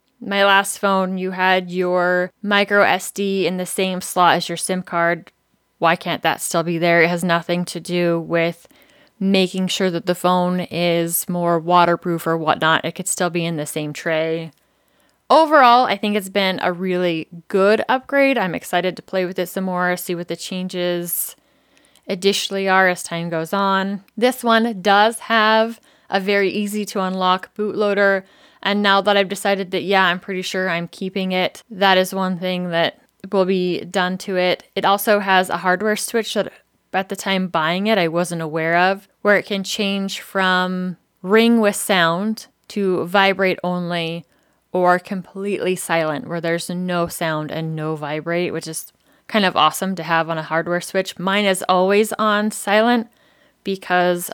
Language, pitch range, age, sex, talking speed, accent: English, 175-200 Hz, 20-39, female, 175 wpm, American